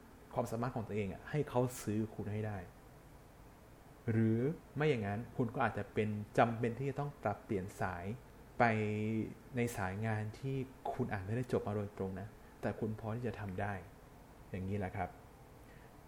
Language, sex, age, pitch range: Thai, male, 20-39, 105-125 Hz